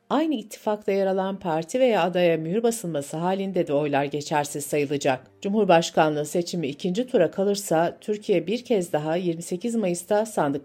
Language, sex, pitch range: Turkish, female, 165-225 Hz